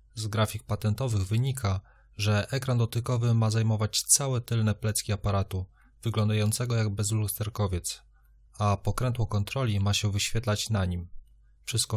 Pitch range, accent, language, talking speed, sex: 100-115 Hz, native, Polish, 125 wpm, male